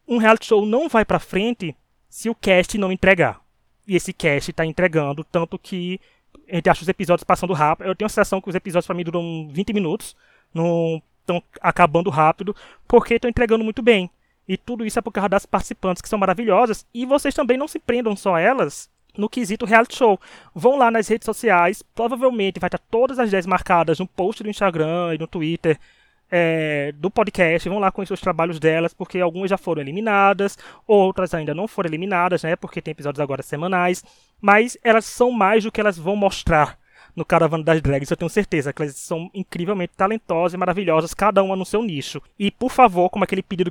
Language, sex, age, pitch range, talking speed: Portuguese, male, 20-39, 170-215 Hz, 205 wpm